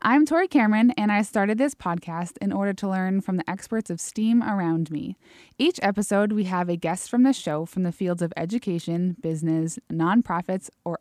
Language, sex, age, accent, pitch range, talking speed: English, female, 20-39, American, 175-240 Hz, 195 wpm